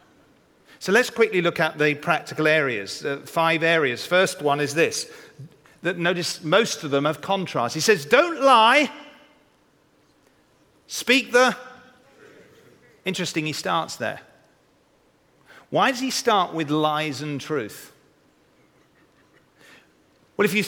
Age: 40-59